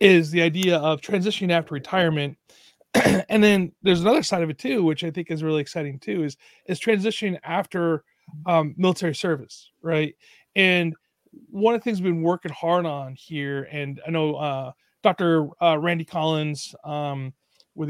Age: 30-49